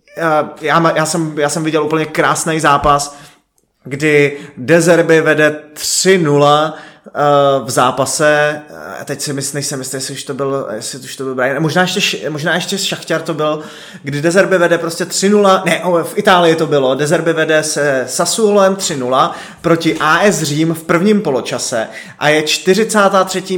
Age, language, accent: 20-39, English, Czech